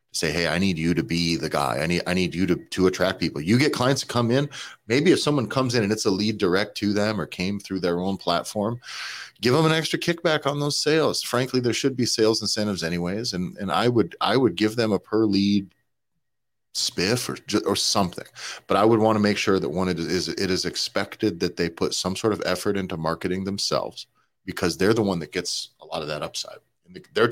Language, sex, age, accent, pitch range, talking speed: English, male, 30-49, American, 85-120 Hz, 235 wpm